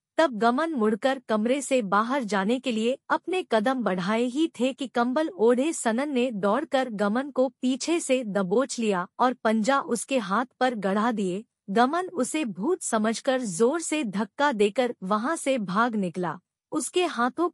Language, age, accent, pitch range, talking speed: English, 50-69, Indian, 215-275 Hz, 160 wpm